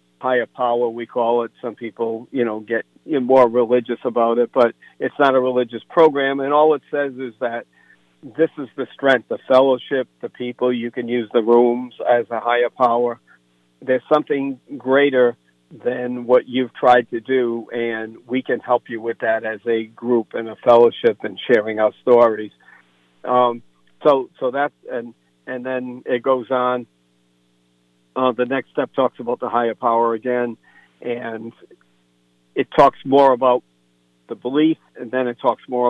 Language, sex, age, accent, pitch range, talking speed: English, male, 60-79, American, 110-130 Hz, 170 wpm